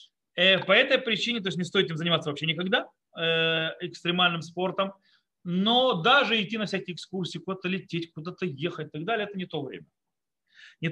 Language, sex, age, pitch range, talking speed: Russian, male, 30-49, 150-200 Hz, 170 wpm